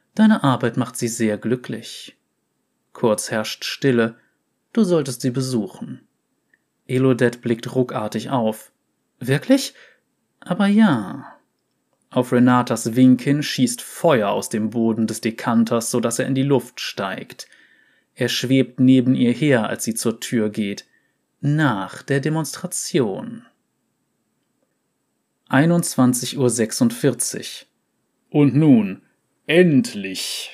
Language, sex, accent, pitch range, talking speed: German, male, German, 120-140 Hz, 110 wpm